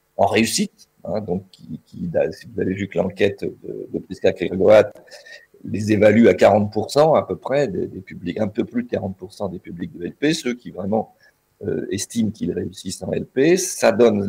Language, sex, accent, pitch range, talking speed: French, male, French, 95-130 Hz, 190 wpm